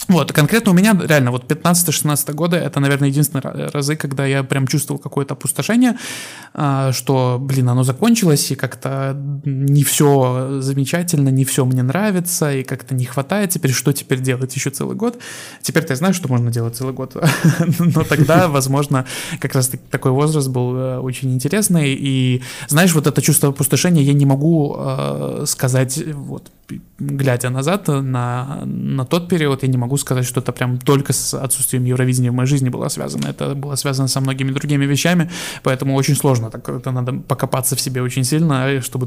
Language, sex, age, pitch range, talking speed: Russian, male, 20-39, 130-155 Hz, 175 wpm